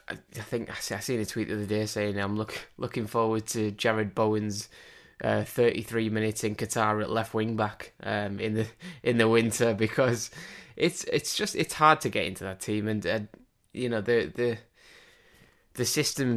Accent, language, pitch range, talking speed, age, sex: British, English, 105-120 Hz, 195 wpm, 10-29, male